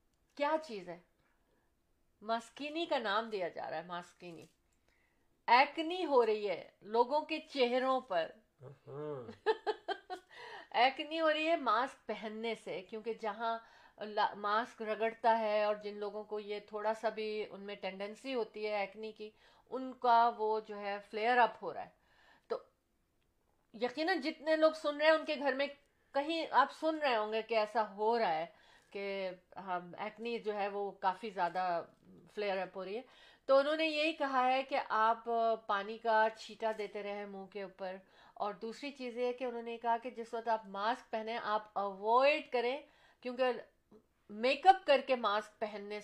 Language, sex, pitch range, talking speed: Urdu, female, 210-280 Hz, 150 wpm